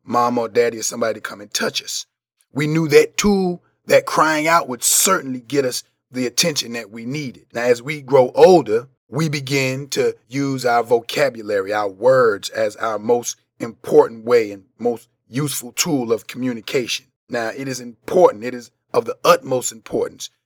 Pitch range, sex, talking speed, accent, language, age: 125-170 Hz, male, 175 wpm, American, English, 30-49